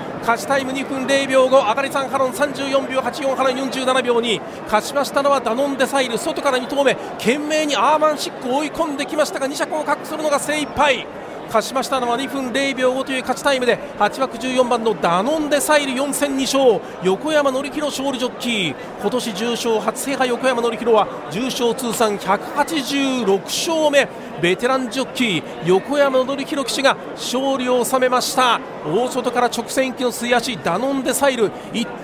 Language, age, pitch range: Japanese, 40-59, 225-275 Hz